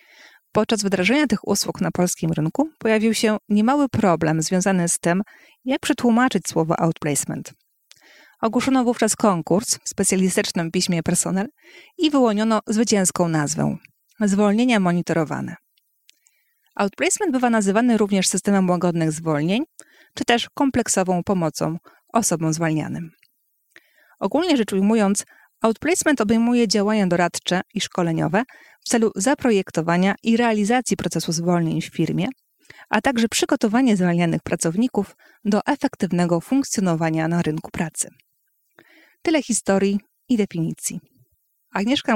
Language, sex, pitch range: Polish, female, 175-235 Hz